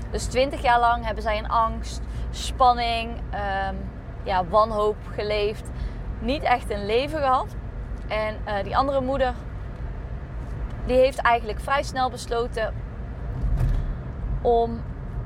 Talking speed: 110 wpm